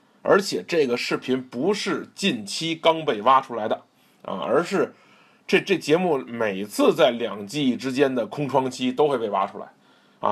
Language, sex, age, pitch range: Chinese, male, 20-39, 130-210 Hz